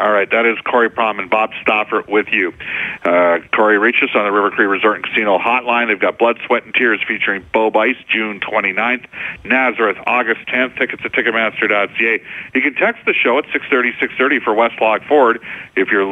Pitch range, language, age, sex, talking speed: 100-120 Hz, English, 50-69, male, 195 wpm